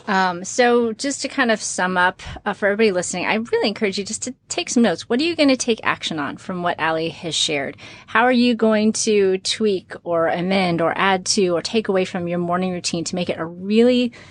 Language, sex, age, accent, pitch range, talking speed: English, female, 30-49, American, 165-205 Hz, 240 wpm